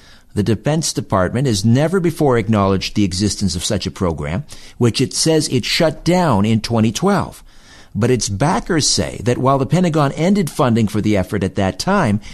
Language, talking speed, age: English, 180 wpm, 60-79